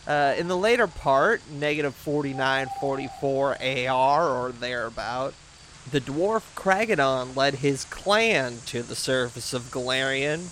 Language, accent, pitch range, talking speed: English, American, 130-180 Hz, 120 wpm